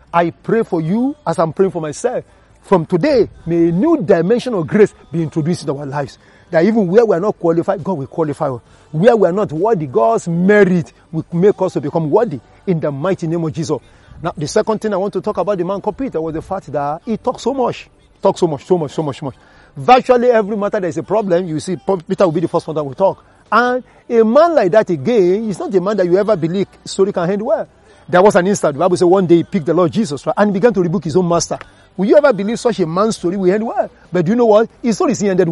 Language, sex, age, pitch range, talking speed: English, male, 40-59, 165-215 Hz, 265 wpm